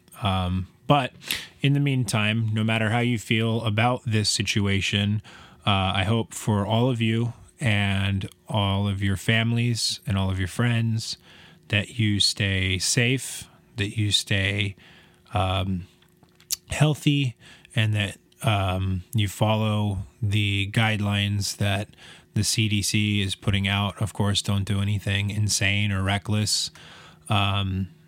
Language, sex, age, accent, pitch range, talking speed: English, male, 20-39, American, 100-120 Hz, 130 wpm